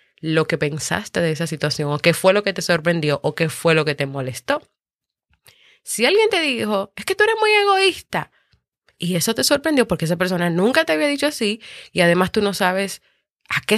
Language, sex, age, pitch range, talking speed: Spanish, female, 20-39, 155-210 Hz, 215 wpm